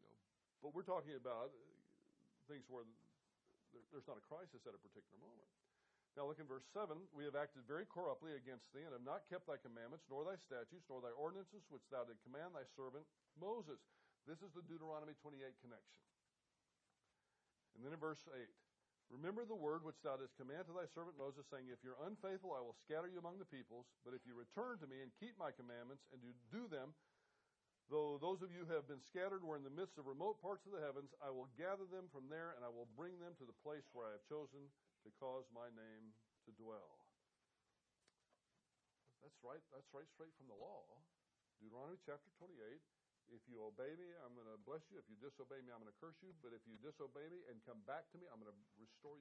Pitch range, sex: 125-170 Hz, male